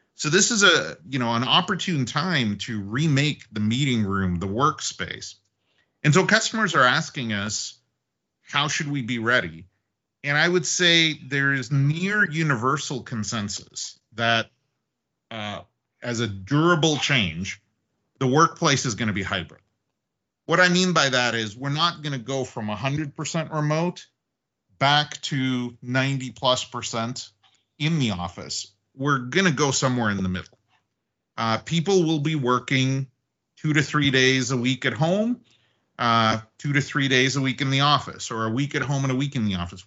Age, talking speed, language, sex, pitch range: 40-59, 170 wpm, Italian, male, 110-155 Hz